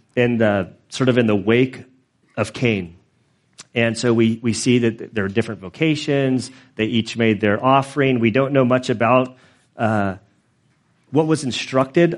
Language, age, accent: English, 40-59, American